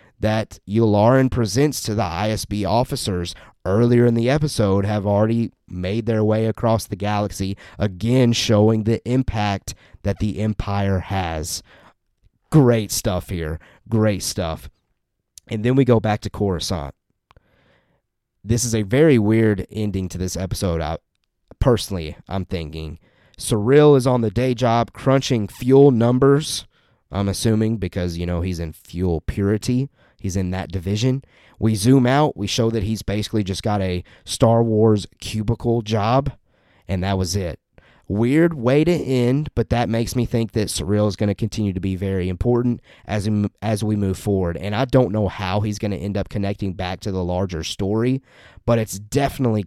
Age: 30-49